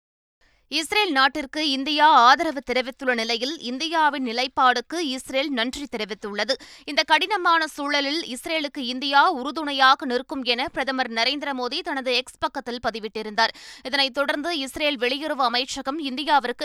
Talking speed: 110 wpm